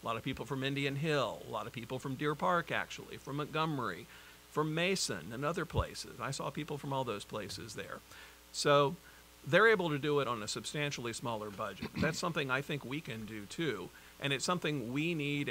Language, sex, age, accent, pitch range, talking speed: English, male, 50-69, American, 110-150 Hz, 210 wpm